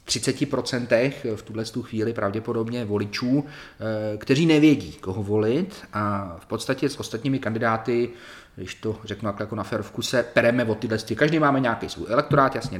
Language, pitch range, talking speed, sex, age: Czech, 110-130 Hz, 150 wpm, male, 30-49